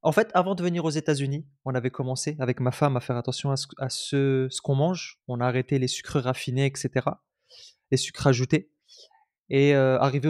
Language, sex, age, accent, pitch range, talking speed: French, male, 20-39, French, 130-150 Hz, 210 wpm